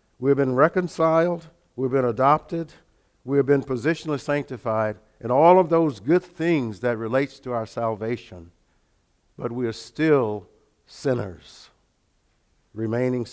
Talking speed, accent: 120 wpm, American